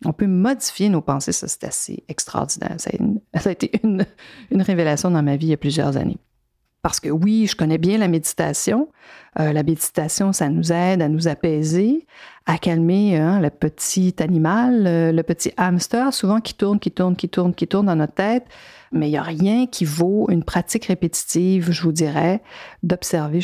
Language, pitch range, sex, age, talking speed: French, 160-195 Hz, female, 50-69, 200 wpm